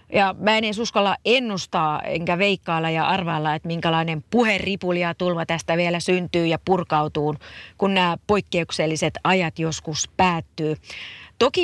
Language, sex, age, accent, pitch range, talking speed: Finnish, female, 30-49, native, 155-195 Hz, 125 wpm